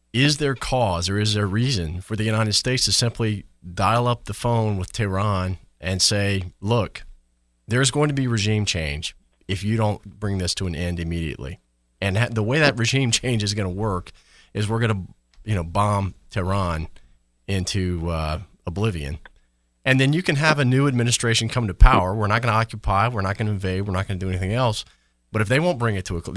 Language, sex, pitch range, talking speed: English, male, 85-115 Hz, 215 wpm